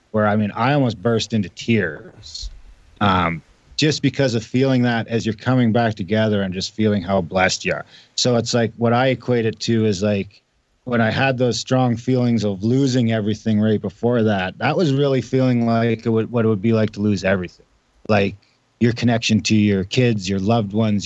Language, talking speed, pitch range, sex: English, 200 wpm, 100-120 Hz, male